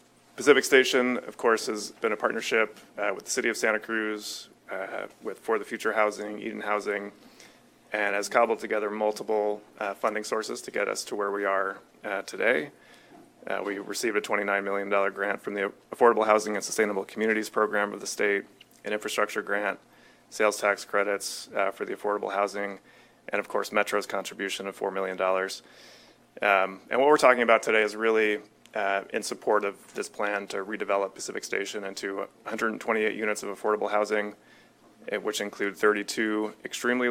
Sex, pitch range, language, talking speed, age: male, 100-110 Hz, English, 170 wpm, 30-49